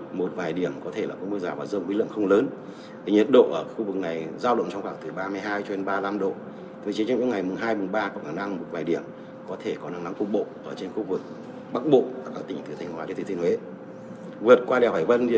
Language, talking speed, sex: Vietnamese, 285 wpm, male